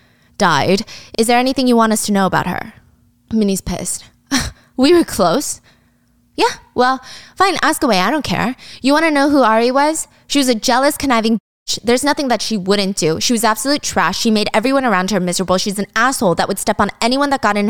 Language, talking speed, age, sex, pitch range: English, 215 wpm, 20-39, female, 180-240 Hz